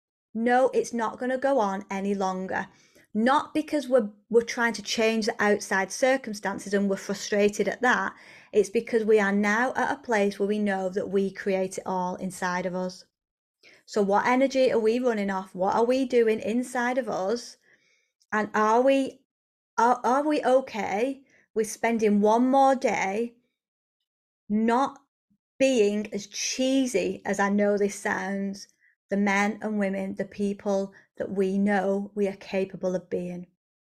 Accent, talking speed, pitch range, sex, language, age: British, 165 wpm, 195-240 Hz, female, English, 30-49